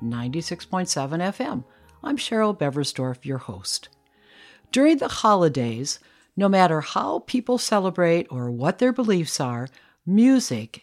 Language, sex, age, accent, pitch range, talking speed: English, female, 60-79, American, 140-205 Hz, 110 wpm